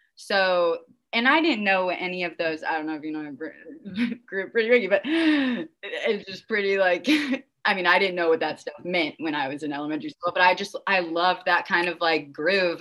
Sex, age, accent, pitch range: female, 20-39, American, 155-220 Hz